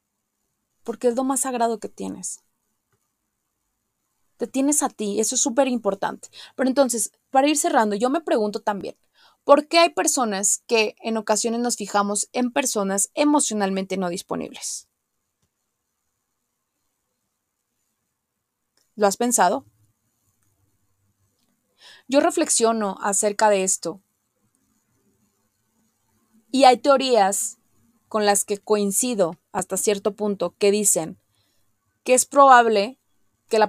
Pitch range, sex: 185-235 Hz, female